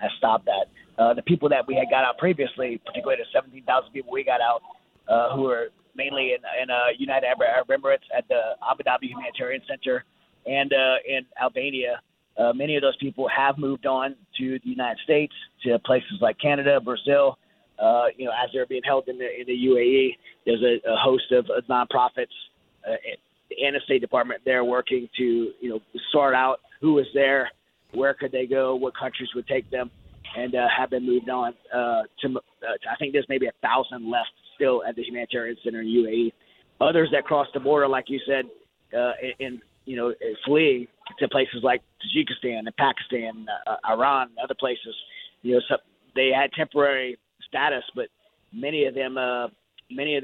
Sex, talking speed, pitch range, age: male, 190 wpm, 120-140 Hz, 30-49